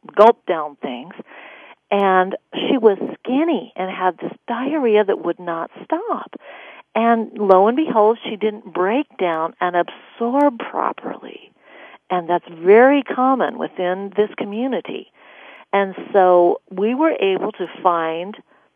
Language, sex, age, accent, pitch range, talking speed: English, female, 50-69, American, 175-245 Hz, 130 wpm